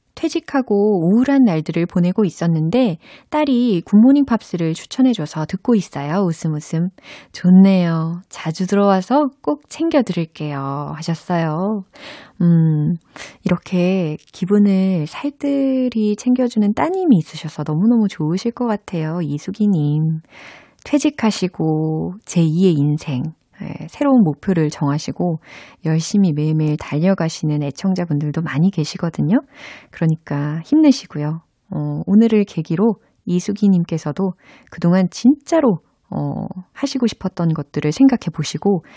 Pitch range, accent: 155-225 Hz, native